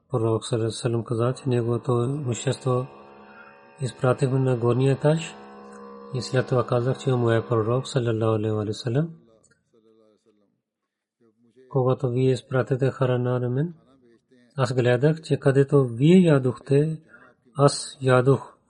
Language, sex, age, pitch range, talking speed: Bulgarian, male, 30-49, 115-135 Hz, 110 wpm